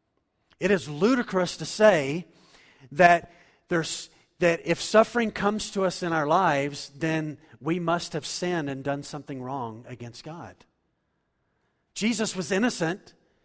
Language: English